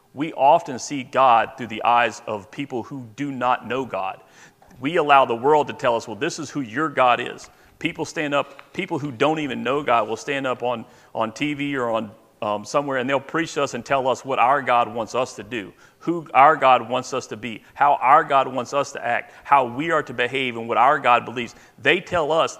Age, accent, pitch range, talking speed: 40-59, American, 120-150 Hz, 235 wpm